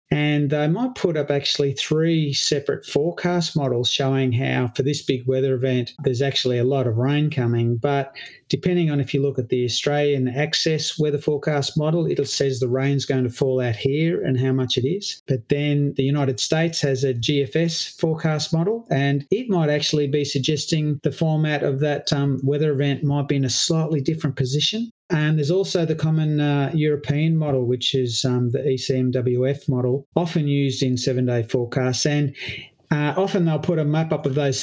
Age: 30-49